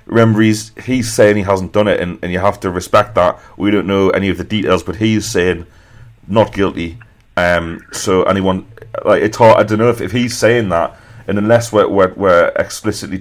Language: English